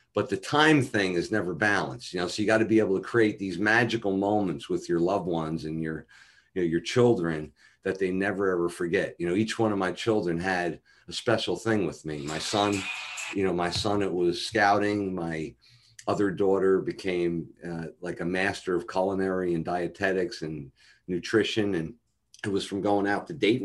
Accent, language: American, English